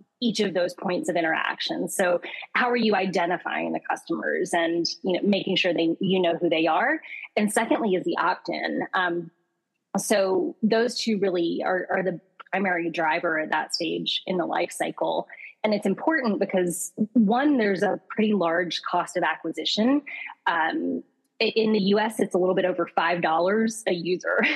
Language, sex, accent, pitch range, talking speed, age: English, female, American, 180-225 Hz, 170 wpm, 20-39